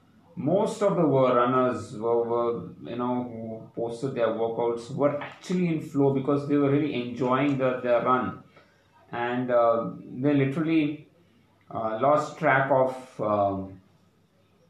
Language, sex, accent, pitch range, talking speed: English, male, Indian, 115-140 Hz, 135 wpm